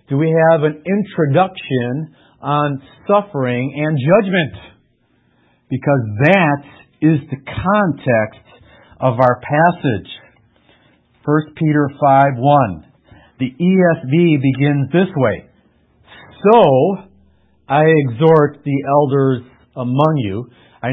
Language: English